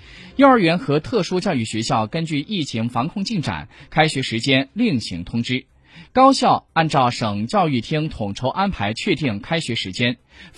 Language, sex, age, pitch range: Chinese, male, 20-39, 115-185 Hz